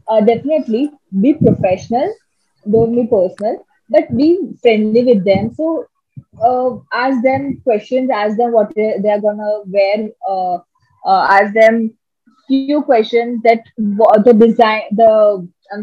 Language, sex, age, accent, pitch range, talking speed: Hindi, female, 20-39, native, 205-255 Hz, 145 wpm